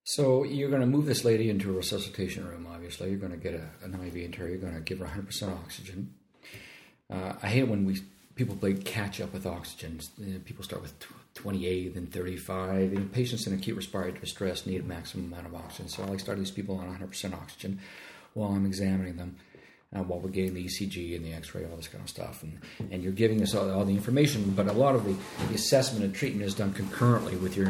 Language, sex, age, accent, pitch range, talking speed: English, male, 50-69, American, 90-110 Hz, 230 wpm